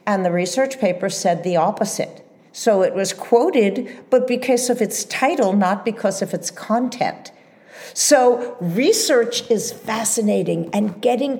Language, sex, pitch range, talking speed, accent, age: English, female, 200-255 Hz, 140 wpm, American, 50-69